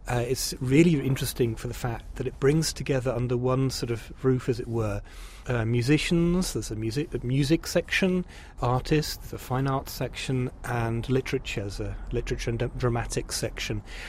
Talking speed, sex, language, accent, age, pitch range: 175 wpm, male, English, British, 30-49, 120-145 Hz